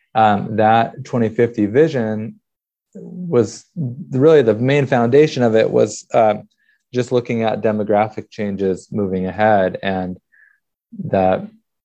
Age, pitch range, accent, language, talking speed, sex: 20-39, 100-115 Hz, American, English, 110 wpm, male